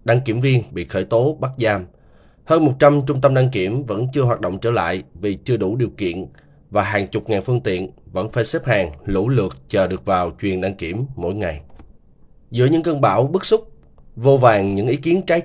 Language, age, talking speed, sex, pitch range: Vietnamese, 20-39, 220 wpm, male, 105-145 Hz